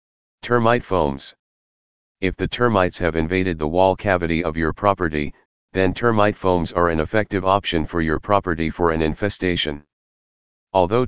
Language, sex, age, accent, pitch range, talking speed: English, male, 40-59, American, 80-100 Hz, 145 wpm